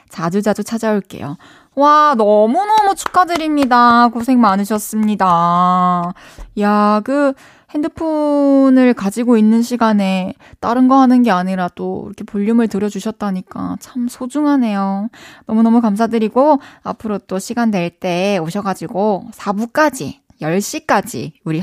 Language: Korean